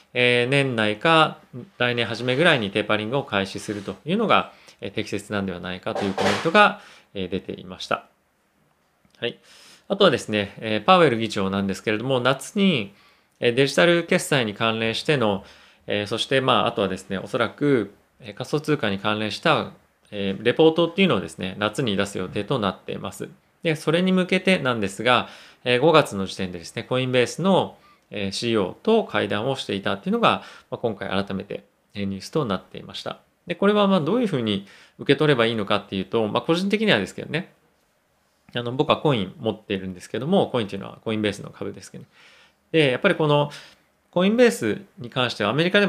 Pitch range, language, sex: 105-155 Hz, Japanese, male